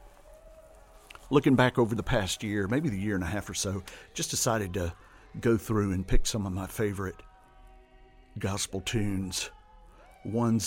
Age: 50-69